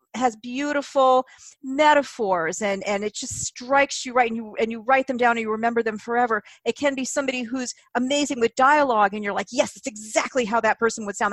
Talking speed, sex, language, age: 215 wpm, female, English, 40-59